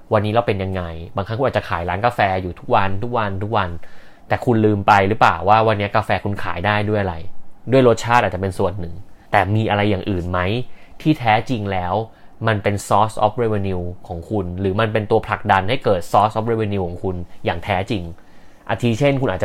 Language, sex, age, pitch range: Thai, male, 20-39, 95-120 Hz